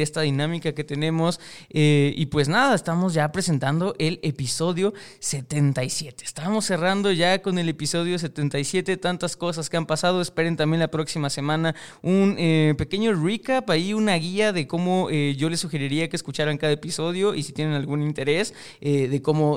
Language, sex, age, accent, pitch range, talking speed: Spanish, male, 20-39, Mexican, 145-175 Hz, 170 wpm